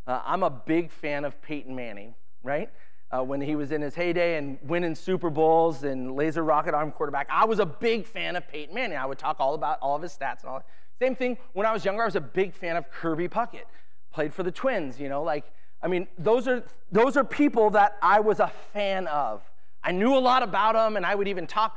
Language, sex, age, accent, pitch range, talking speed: English, male, 30-49, American, 135-190 Hz, 250 wpm